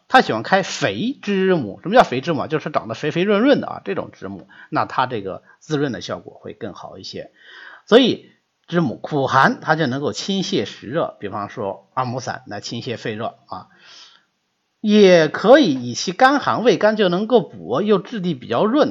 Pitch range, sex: 155-255 Hz, male